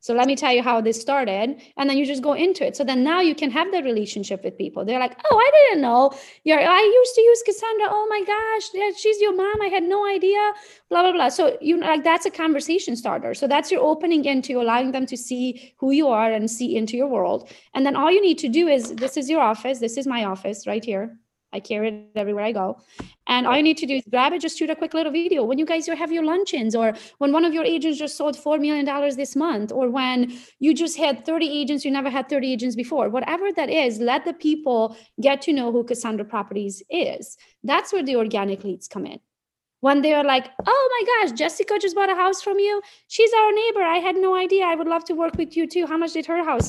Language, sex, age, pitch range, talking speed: English, female, 20-39, 250-335 Hz, 255 wpm